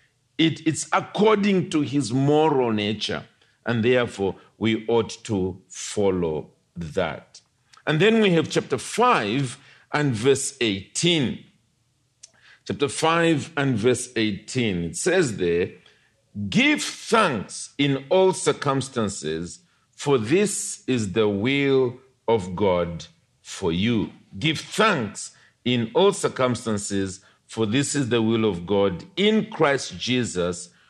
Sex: male